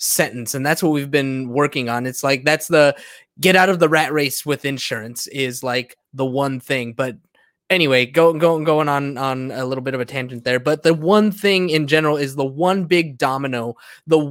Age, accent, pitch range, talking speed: 20-39, American, 145-175 Hz, 220 wpm